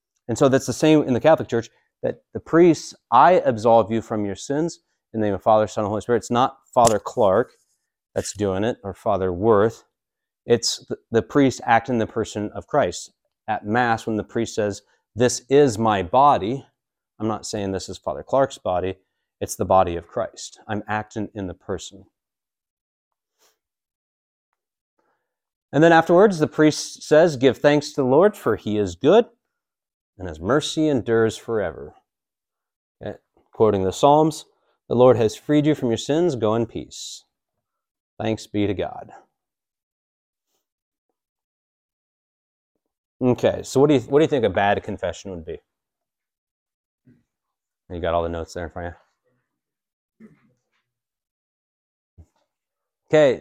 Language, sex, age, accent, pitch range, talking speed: English, male, 40-59, American, 100-145 Hz, 150 wpm